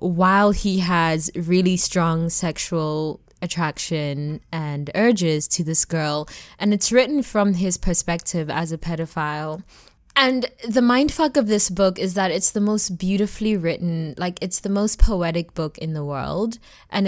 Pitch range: 165-205 Hz